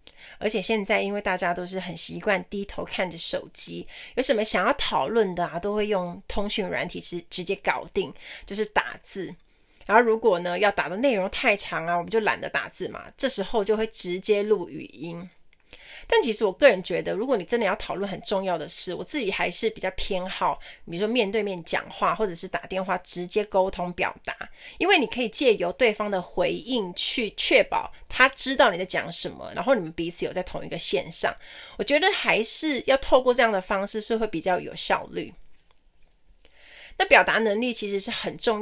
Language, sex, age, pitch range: Chinese, female, 20-39, 185-245 Hz